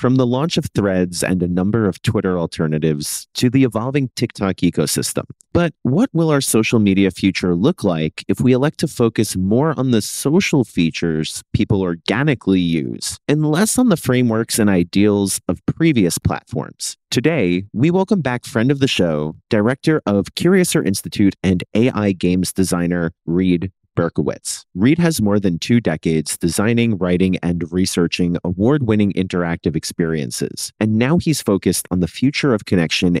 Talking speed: 160 wpm